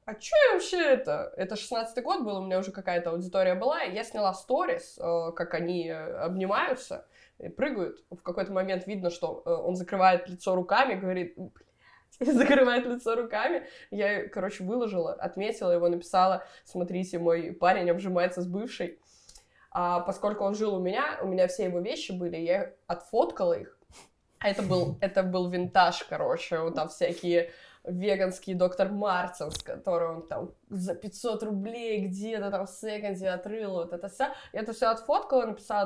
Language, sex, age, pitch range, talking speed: Russian, female, 20-39, 180-220 Hz, 155 wpm